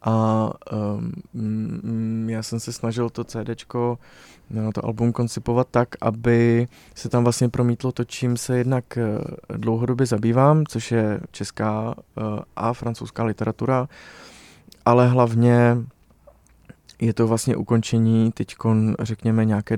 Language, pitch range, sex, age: Czech, 110-120 Hz, male, 20-39